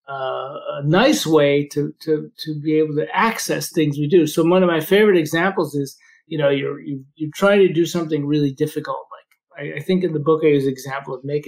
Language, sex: English, male